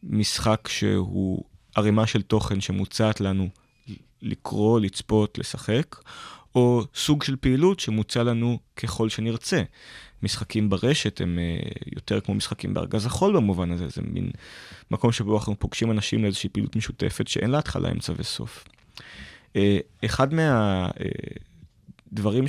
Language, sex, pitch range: Hebrew, male, 105-130 Hz